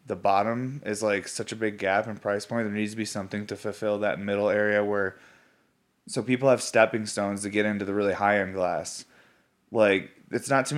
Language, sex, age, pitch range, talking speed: English, male, 20-39, 100-115 Hz, 210 wpm